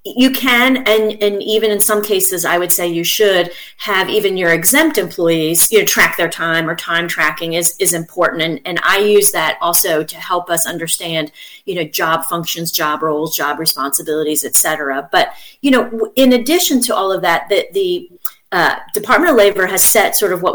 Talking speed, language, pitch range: 200 wpm, English, 170-225 Hz